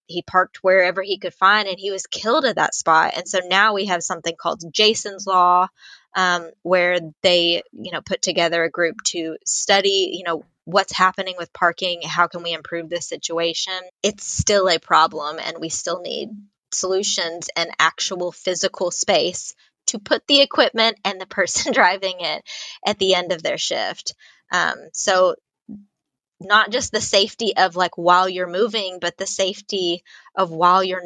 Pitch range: 175-205 Hz